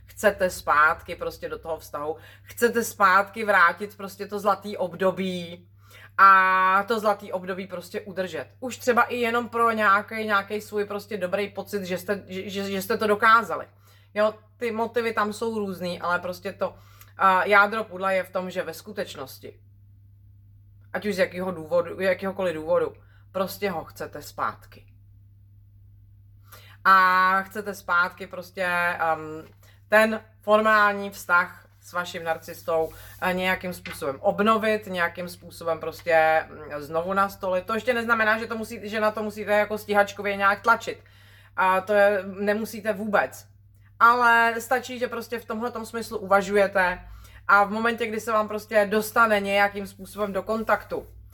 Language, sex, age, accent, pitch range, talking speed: Czech, female, 30-49, native, 160-210 Hz, 145 wpm